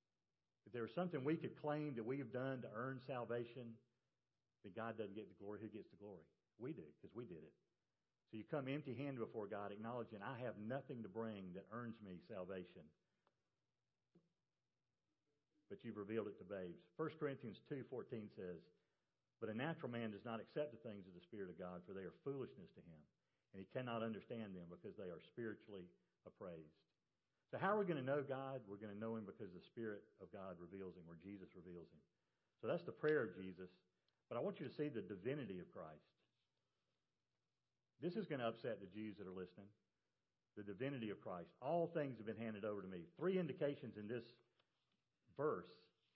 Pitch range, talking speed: 100-135 Hz, 200 wpm